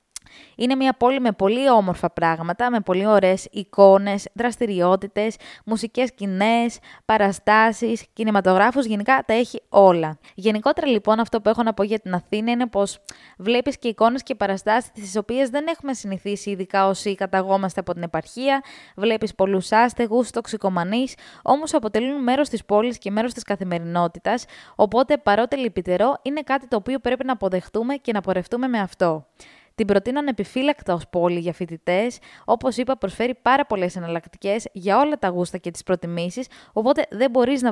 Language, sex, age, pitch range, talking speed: Greek, female, 20-39, 190-250 Hz, 160 wpm